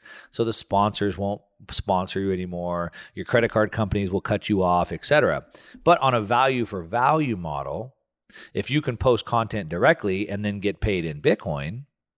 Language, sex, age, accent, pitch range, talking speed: English, male, 40-59, American, 95-130 Hz, 170 wpm